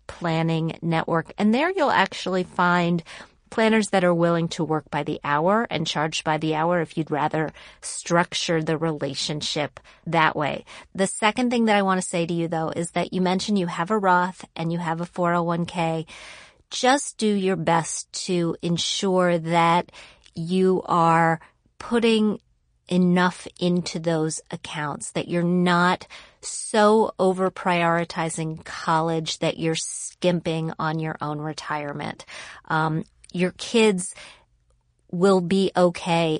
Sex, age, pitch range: female, 30-49, 160-180 Hz